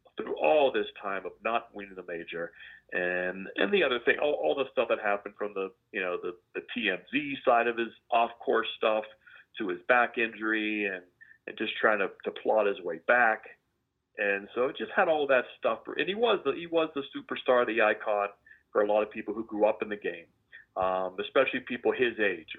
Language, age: English, 40-59